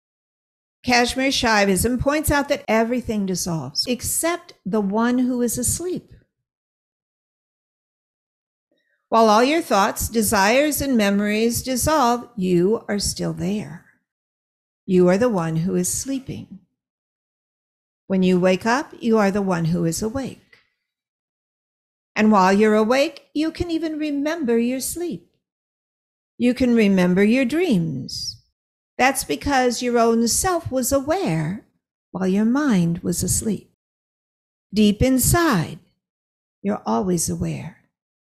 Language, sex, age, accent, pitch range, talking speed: English, female, 50-69, American, 185-255 Hz, 115 wpm